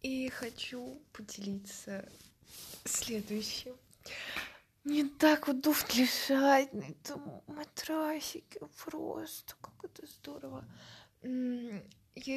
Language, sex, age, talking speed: Russian, female, 20-39, 80 wpm